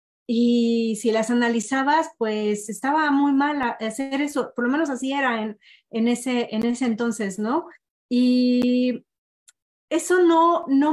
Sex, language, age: female, Spanish, 30-49